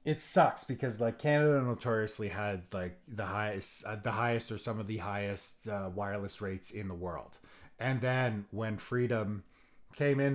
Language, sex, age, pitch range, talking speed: English, male, 30-49, 110-140 Hz, 175 wpm